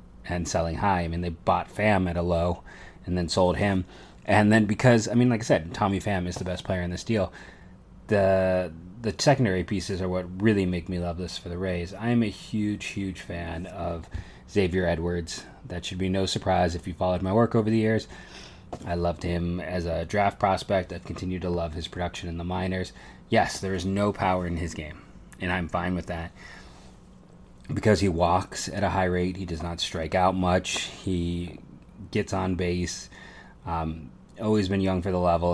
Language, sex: English, male